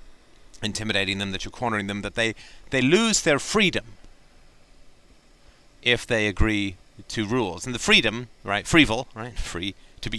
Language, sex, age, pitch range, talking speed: English, male, 30-49, 105-130 Hz, 160 wpm